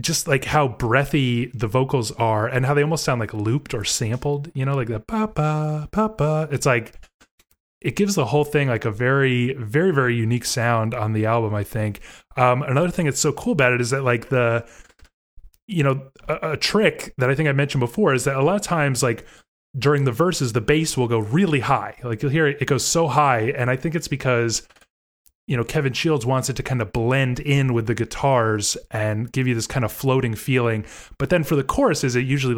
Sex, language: male, English